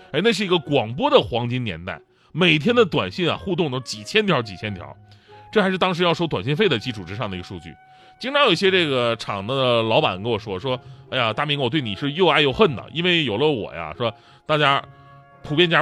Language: Chinese